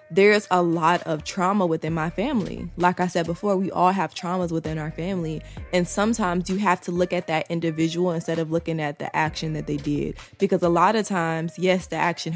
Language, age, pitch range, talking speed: English, 20-39, 160-185 Hz, 220 wpm